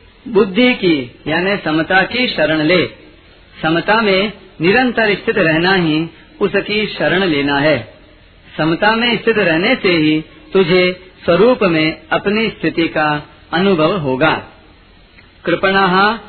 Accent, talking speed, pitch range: native, 120 wpm, 155-205 Hz